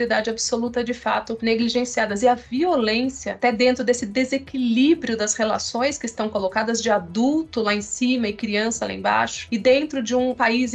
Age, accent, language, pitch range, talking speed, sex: 30-49, Brazilian, Portuguese, 220-260 Hz, 165 wpm, female